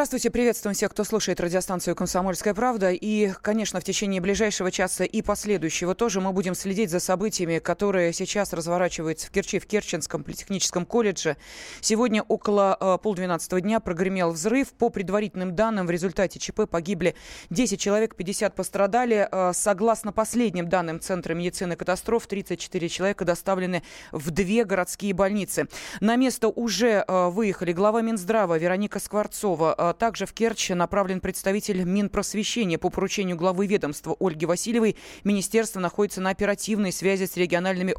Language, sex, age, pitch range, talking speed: Russian, female, 20-39, 180-215 Hz, 145 wpm